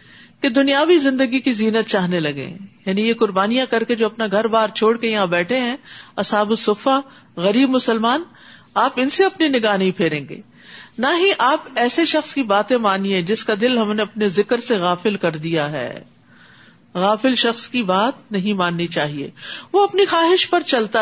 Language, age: Urdu, 50-69